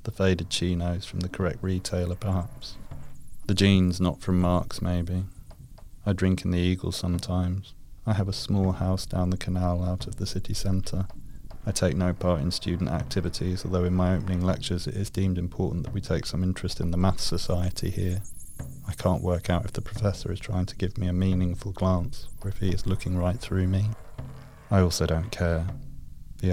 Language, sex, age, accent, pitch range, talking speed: English, male, 30-49, British, 90-100 Hz, 195 wpm